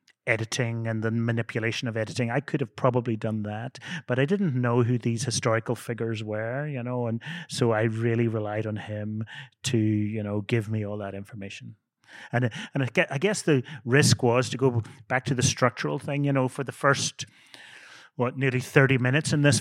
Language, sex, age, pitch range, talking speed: English, male, 30-49, 115-135 Hz, 195 wpm